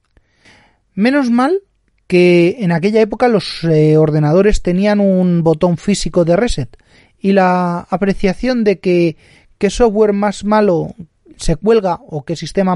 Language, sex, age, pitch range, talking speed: Spanish, male, 30-49, 130-200 Hz, 130 wpm